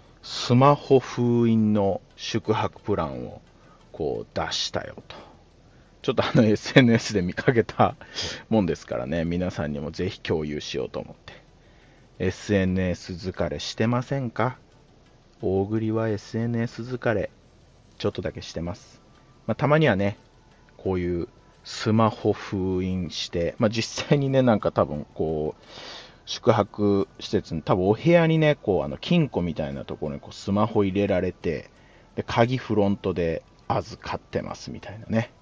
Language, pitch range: Japanese, 90-120 Hz